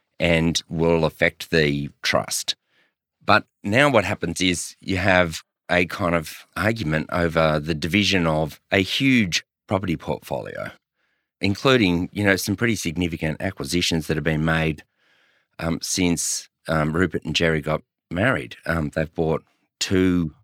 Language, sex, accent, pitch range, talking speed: English, male, Australian, 80-95 Hz, 140 wpm